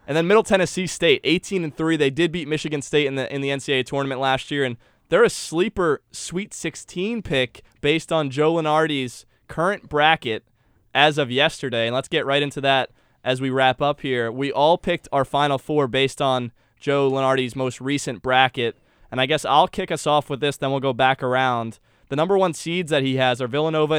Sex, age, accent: male, 20-39, American